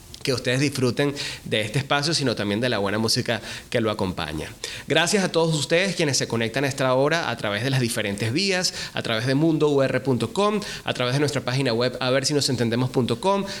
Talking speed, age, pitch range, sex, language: 205 wpm, 30-49, 120-160 Hz, male, Spanish